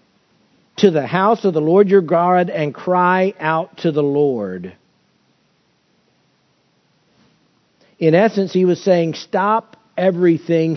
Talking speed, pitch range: 115 wpm, 155-190 Hz